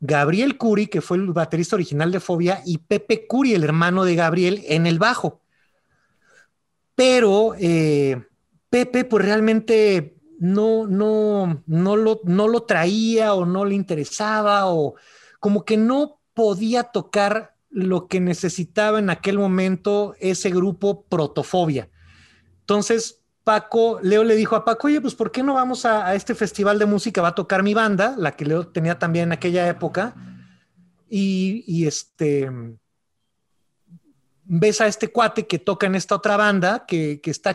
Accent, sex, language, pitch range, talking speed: Mexican, male, English, 175-220 Hz, 155 wpm